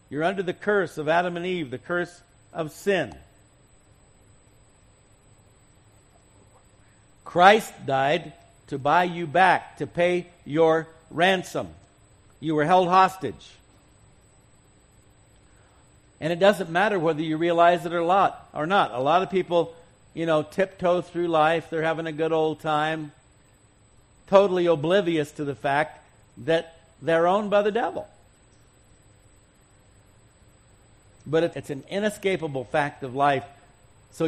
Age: 60-79